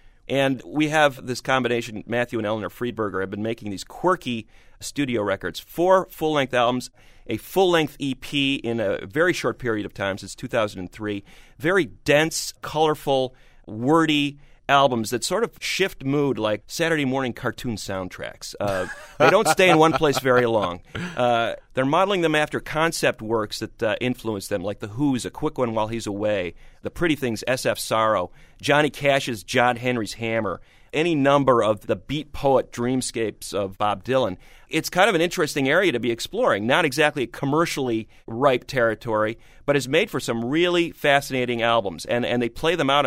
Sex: male